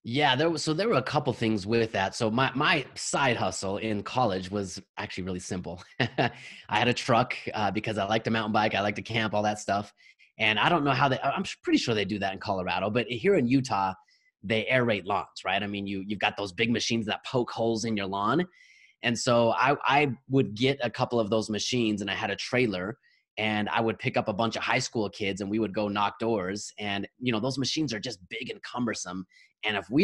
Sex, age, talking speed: male, 20-39, 245 wpm